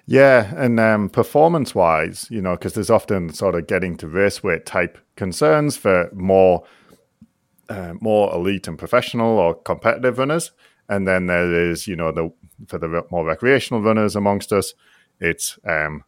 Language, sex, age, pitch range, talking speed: English, male, 40-59, 85-110 Hz, 165 wpm